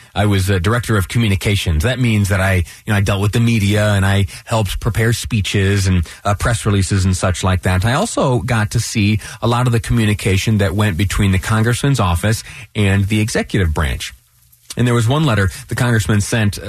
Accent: American